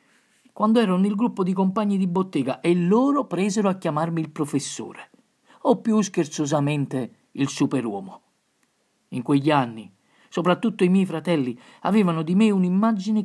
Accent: native